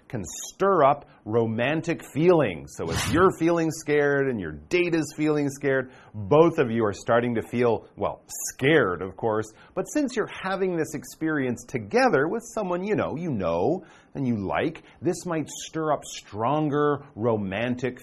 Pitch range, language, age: 110-155 Hz, Chinese, 40-59